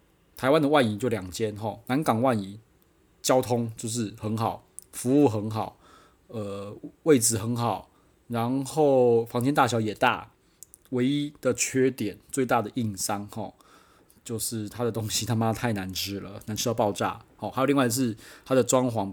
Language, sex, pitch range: Chinese, male, 105-130 Hz